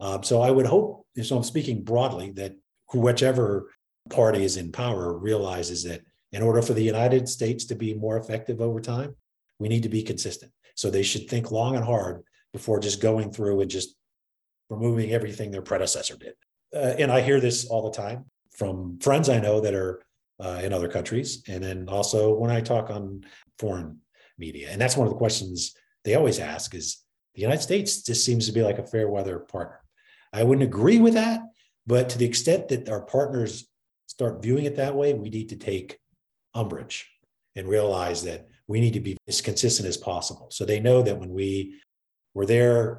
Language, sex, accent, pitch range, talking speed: English, male, American, 100-125 Hz, 200 wpm